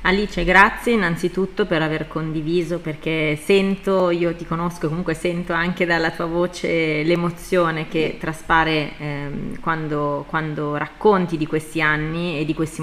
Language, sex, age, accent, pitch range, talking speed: Italian, female, 30-49, native, 155-180 Hz, 140 wpm